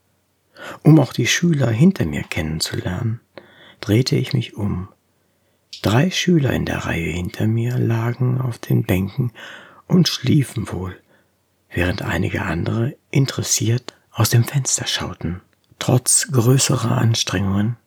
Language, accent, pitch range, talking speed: German, German, 100-130 Hz, 120 wpm